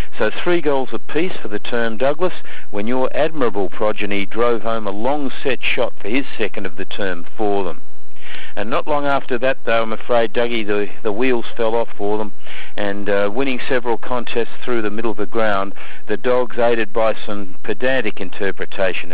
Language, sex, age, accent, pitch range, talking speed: English, male, 50-69, Australian, 100-125 Hz, 190 wpm